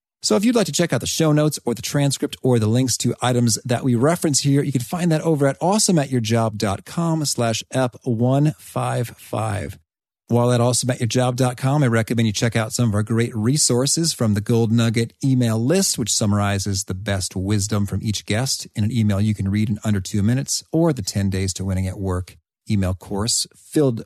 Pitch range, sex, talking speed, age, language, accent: 105-150 Hz, male, 195 wpm, 40-59, English, American